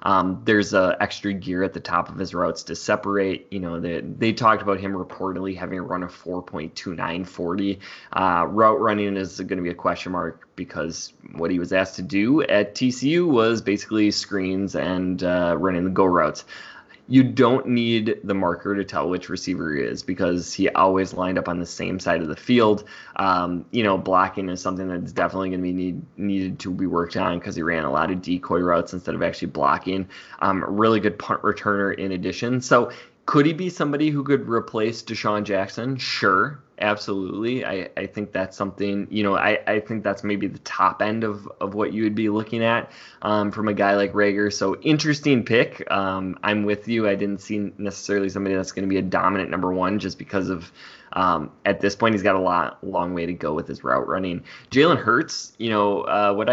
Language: English